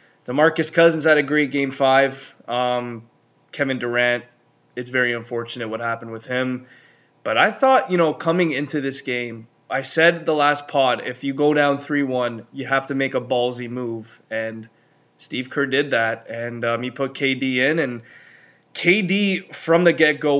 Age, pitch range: 20-39, 120-145 Hz